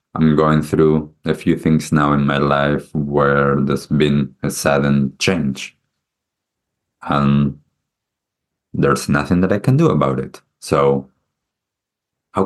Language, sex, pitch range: English, male, 70-80 Hz